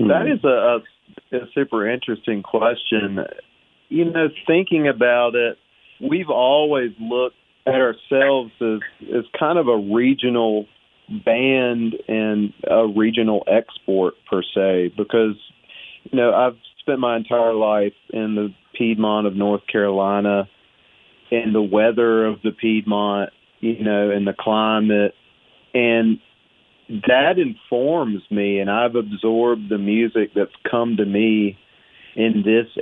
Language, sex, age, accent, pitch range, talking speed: English, male, 40-59, American, 105-120 Hz, 130 wpm